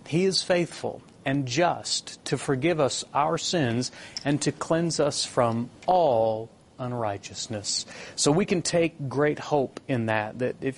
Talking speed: 150 wpm